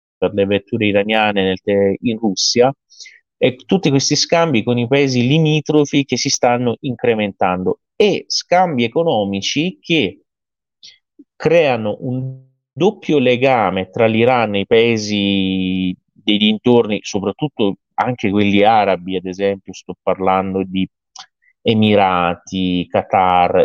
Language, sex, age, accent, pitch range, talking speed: Italian, male, 30-49, native, 100-130 Hz, 115 wpm